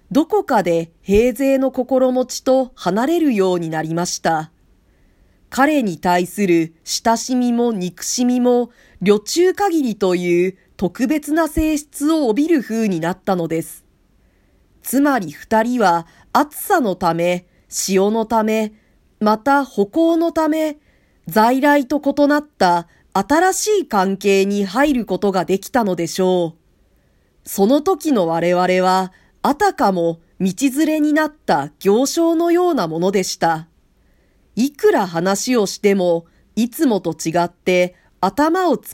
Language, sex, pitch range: Japanese, female, 175-280 Hz